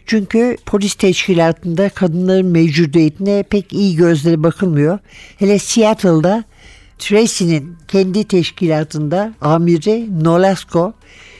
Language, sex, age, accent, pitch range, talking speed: Turkish, male, 60-79, native, 165-205 Hz, 85 wpm